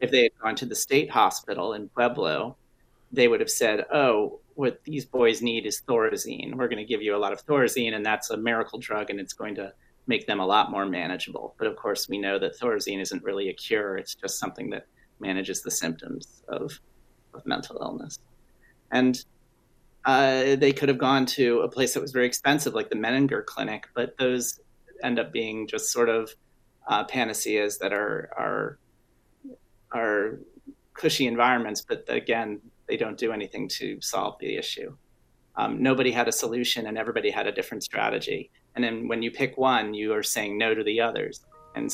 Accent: American